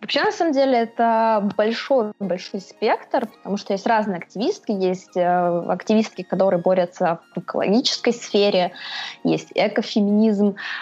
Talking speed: 115 wpm